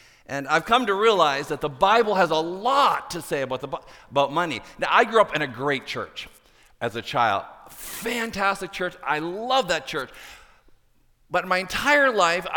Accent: American